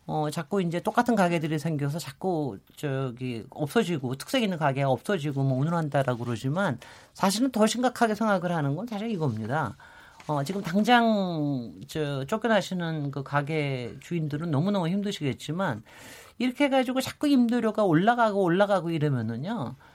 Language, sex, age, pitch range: Korean, male, 40-59, 150-230 Hz